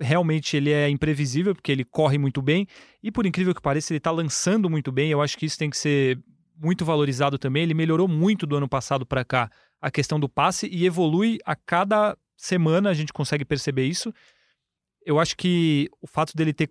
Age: 30-49